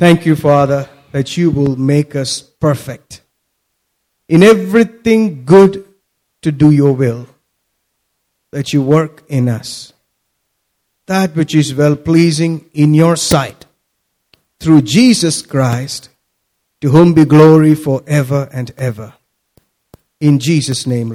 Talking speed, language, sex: 115 wpm, English, male